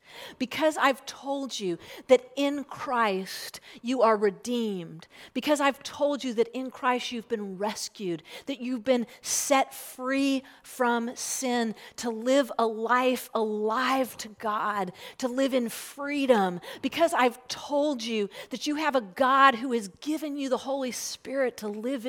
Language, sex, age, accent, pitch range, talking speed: English, female, 40-59, American, 225-270 Hz, 150 wpm